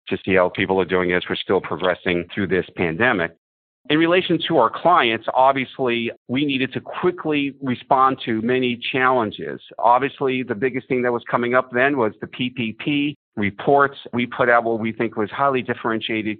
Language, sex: English, male